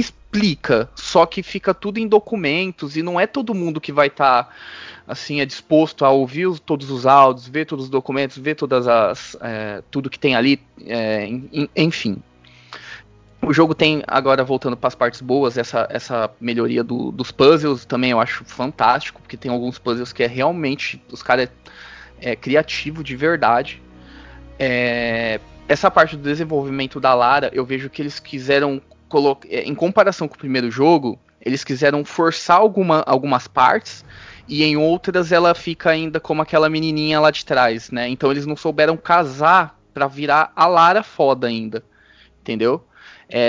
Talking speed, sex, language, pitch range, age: 170 wpm, male, Portuguese, 125-160 Hz, 20-39